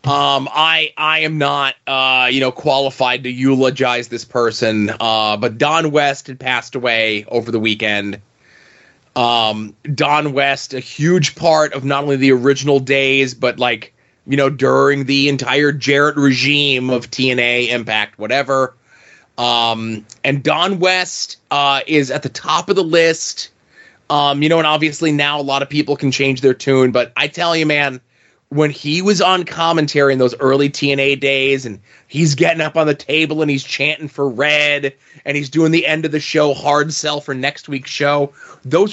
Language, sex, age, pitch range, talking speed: English, male, 20-39, 135-165 Hz, 180 wpm